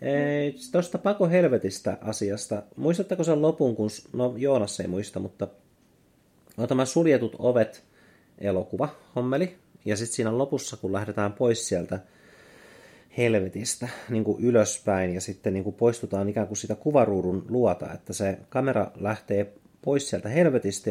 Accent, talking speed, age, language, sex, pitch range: native, 140 wpm, 30-49, Finnish, male, 95-125 Hz